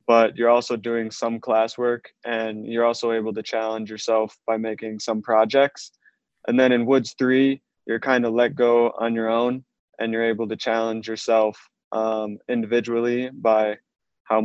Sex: male